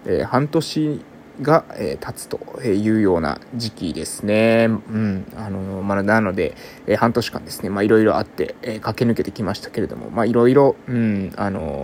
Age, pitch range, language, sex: 20-39, 105-130 Hz, Japanese, male